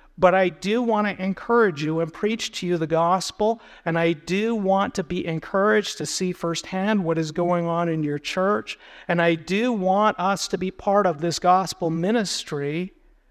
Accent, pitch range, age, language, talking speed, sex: American, 165-200 Hz, 50-69, English, 190 wpm, male